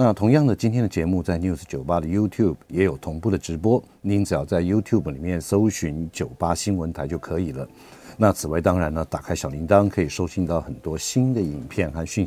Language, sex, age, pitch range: Chinese, male, 50-69, 80-105 Hz